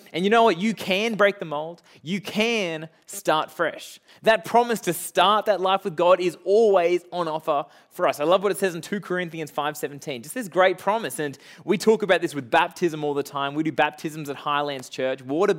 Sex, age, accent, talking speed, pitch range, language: male, 20-39, Australian, 220 wpm, 145-195 Hz, English